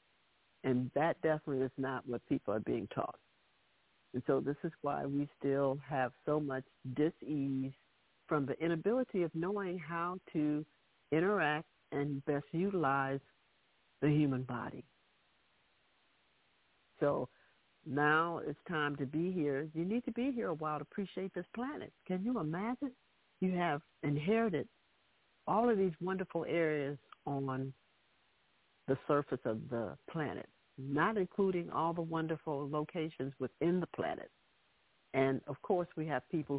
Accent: American